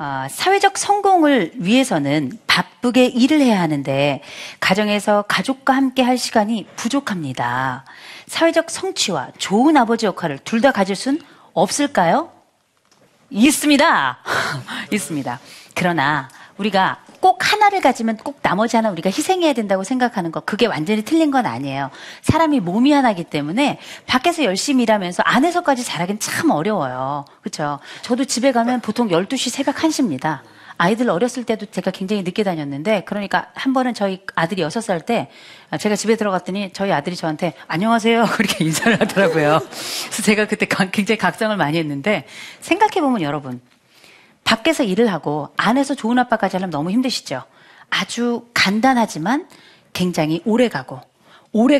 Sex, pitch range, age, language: female, 175-260 Hz, 40-59, Korean